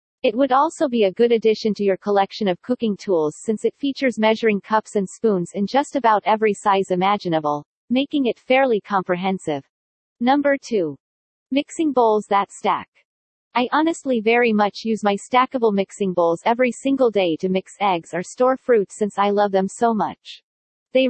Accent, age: American, 40-59